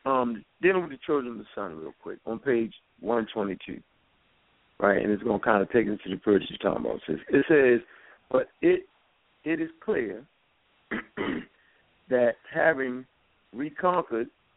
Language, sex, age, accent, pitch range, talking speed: English, male, 60-79, American, 125-210 Hz, 160 wpm